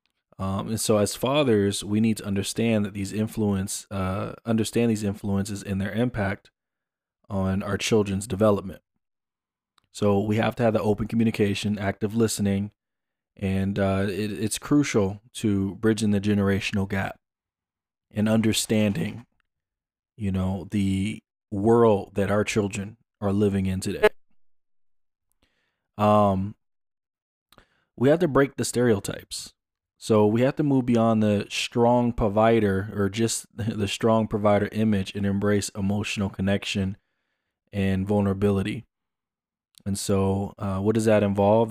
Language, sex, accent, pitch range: English, male, American, 100-110 Hz